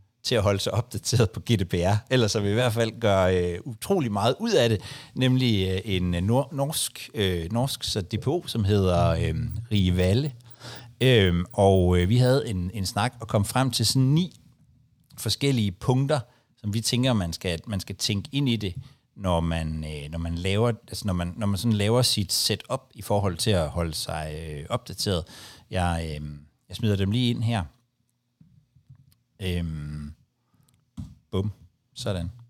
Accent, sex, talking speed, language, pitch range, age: native, male, 155 wpm, Danish, 95-125 Hz, 60-79